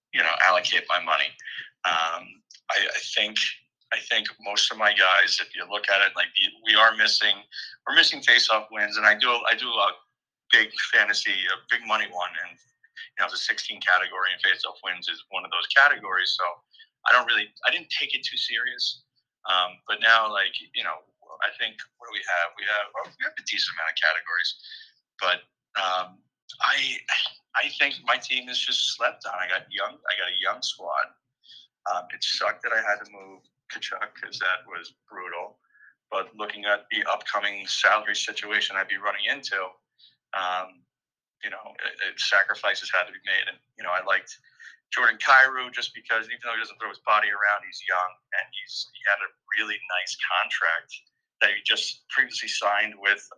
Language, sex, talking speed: English, male, 190 wpm